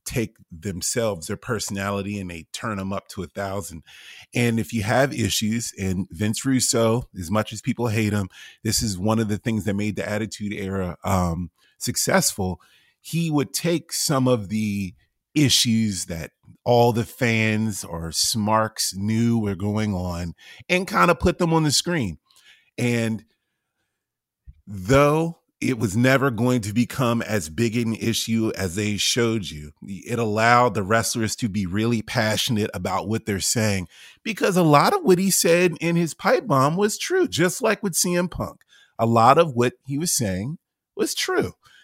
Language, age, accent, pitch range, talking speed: English, 30-49, American, 100-120 Hz, 170 wpm